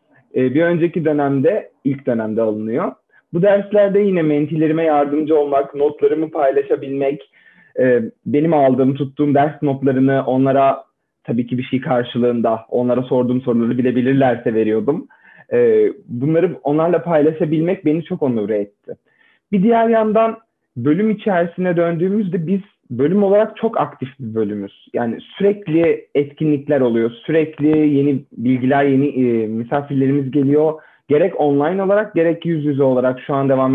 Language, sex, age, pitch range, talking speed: Turkish, male, 40-59, 130-170 Hz, 125 wpm